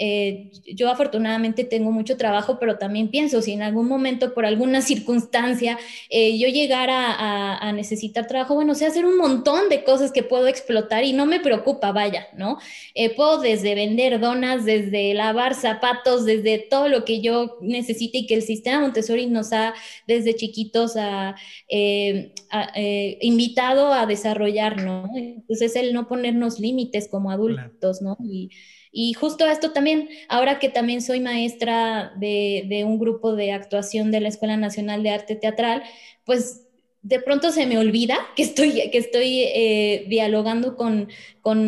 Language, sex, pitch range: Spanish, female, 215-255 Hz